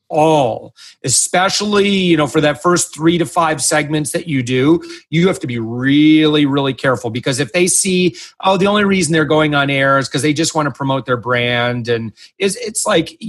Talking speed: 210 wpm